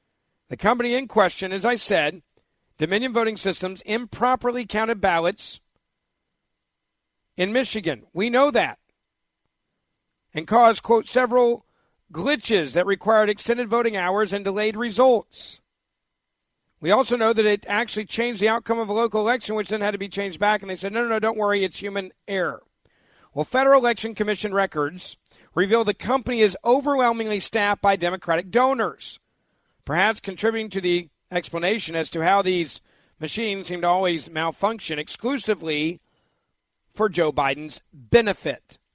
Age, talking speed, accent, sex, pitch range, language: 50-69, 145 wpm, American, male, 165-225 Hz, English